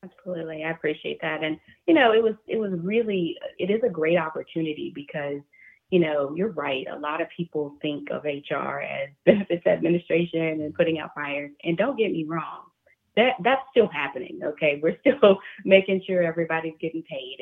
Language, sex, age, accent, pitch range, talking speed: English, female, 30-49, American, 140-175 Hz, 185 wpm